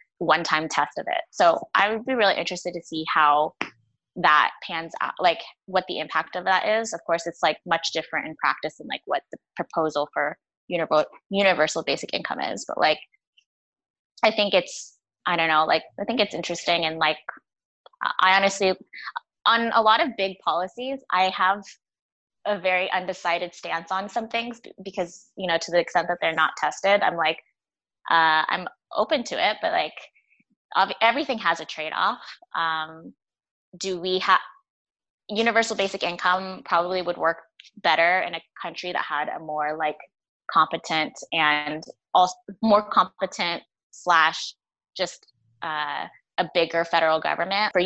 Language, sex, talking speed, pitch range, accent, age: English, female, 160 wpm, 165-200 Hz, American, 20-39